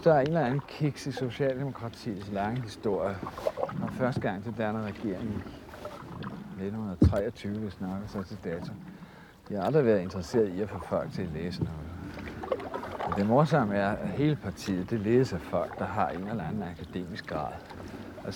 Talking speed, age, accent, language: 180 wpm, 60-79, native, Danish